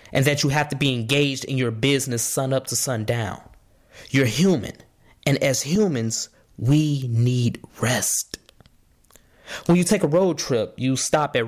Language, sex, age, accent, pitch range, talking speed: English, male, 20-39, American, 120-170 Hz, 160 wpm